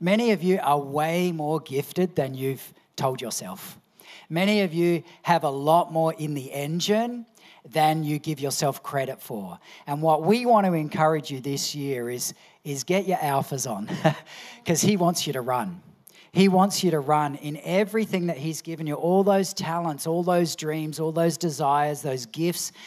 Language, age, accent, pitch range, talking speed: English, 40-59, Australian, 150-185 Hz, 185 wpm